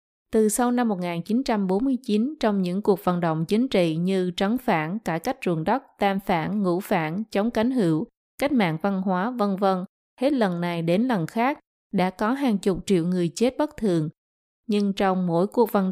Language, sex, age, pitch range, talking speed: Vietnamese, female, 20-39, 185-230 Hz, 190 wpm